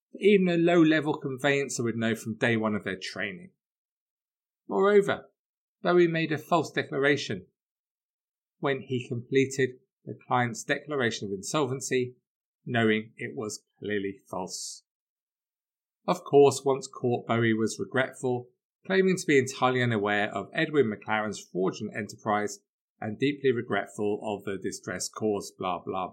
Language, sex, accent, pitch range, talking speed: English, male, British, 115-165 Hz, 135 wpm